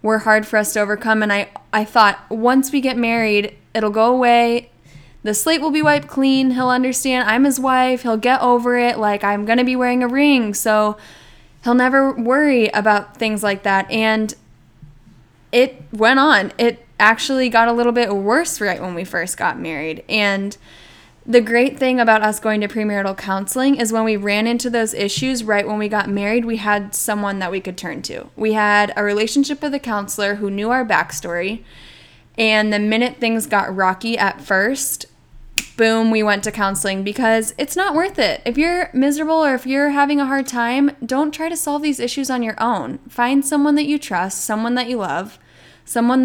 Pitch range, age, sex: 205-255 Hz, 10-29, female